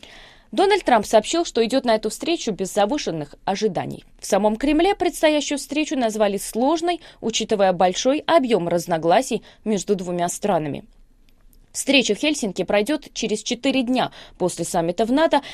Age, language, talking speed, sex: 20-39, Russian, 140 wpm, female